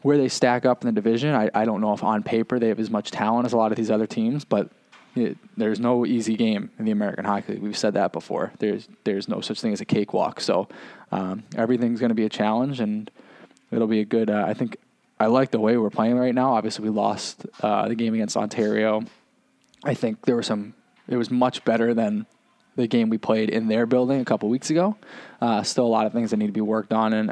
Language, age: English, 20-39